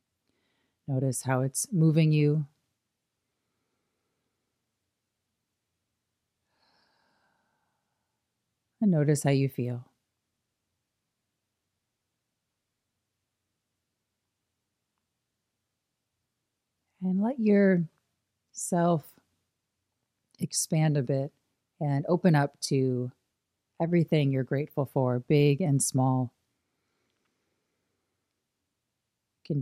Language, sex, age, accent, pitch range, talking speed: English, female, 40-59, American, 120-150 Hz, 60 wpm